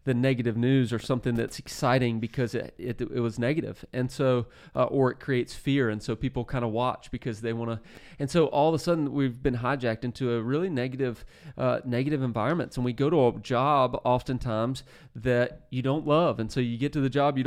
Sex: male